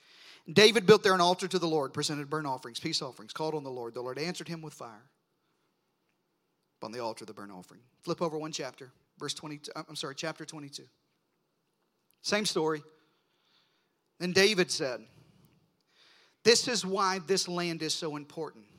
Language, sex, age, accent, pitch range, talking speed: English, male, 40-59, American, 150-190 Hz, 170 wpm